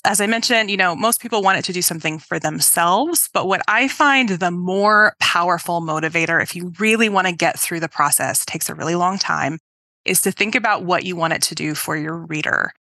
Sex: female